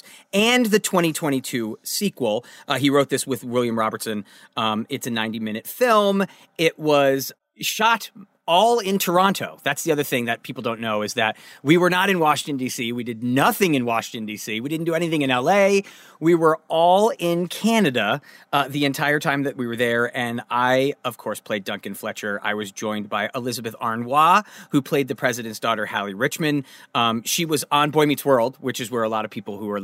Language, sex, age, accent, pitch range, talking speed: English, male, 30-49, American, 115-170 Hz, 200 wpm